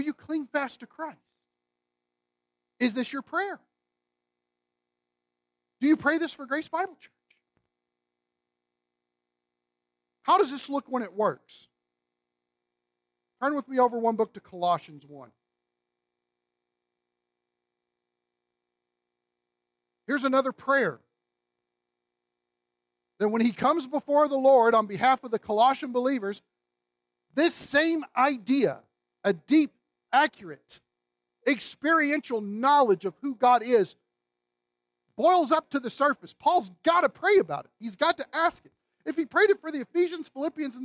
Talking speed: 125 wpm